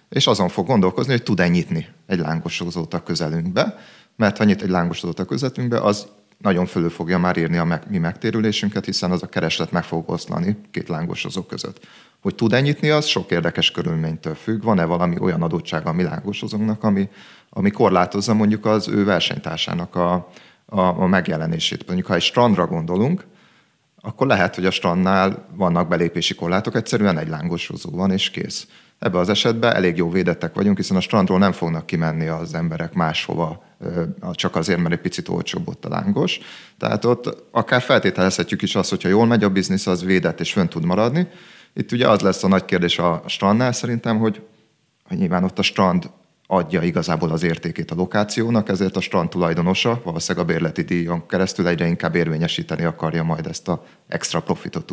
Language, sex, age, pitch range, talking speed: Hungarian, male, 30-49, 85-110 Hz, 180 wpm